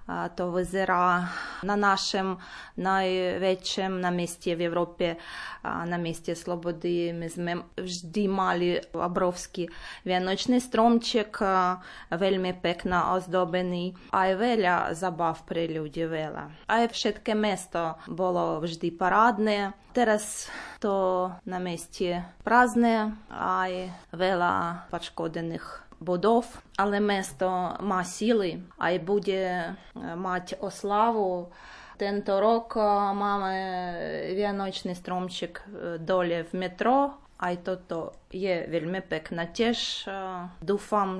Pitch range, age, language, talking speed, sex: 175-200 Hz, 20-39, Slovak, 100 wpm, female